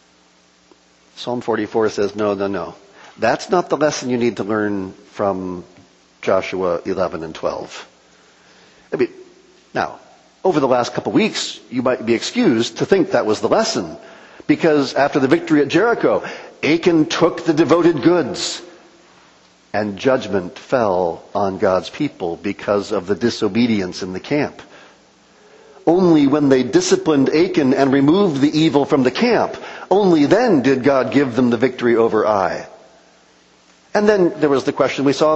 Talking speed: 150 wpm